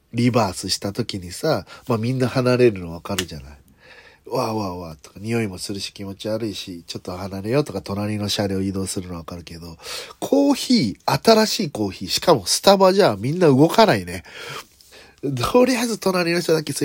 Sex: male